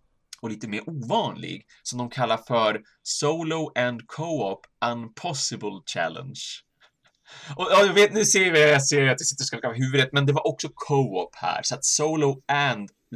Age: 30-49